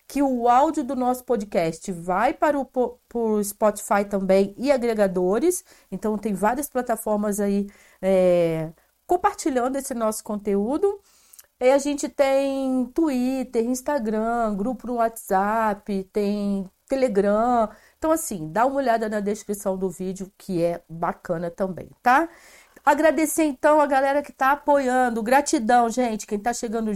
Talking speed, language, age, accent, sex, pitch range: 140 wpm, Portuguese, 40-59, Brazilian, female, 210-285 Hz